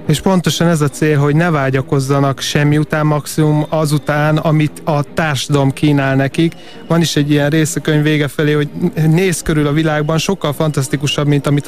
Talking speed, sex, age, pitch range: 170 wpm, male, 30-49, 140-155 Hz